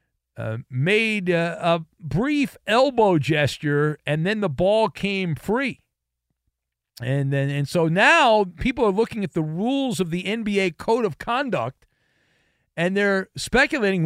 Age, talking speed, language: 50-69, 140 wpm, English